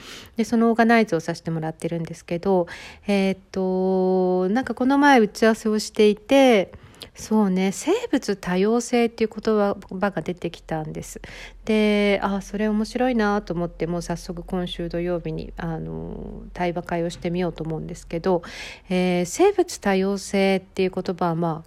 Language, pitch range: Japanese, 170-235 Hz